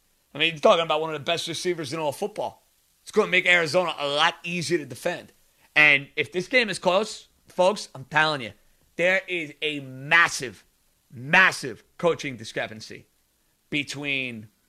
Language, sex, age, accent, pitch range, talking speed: English, male, 30-49, American, 140-180 Hz, 170 wpm